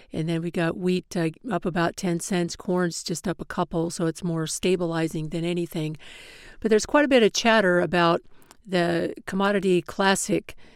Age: 50-69